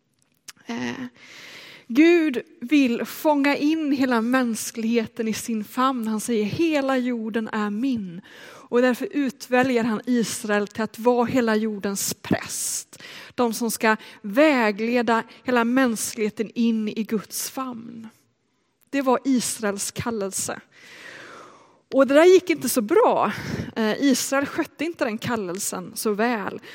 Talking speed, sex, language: 120 wpm, female, Swedish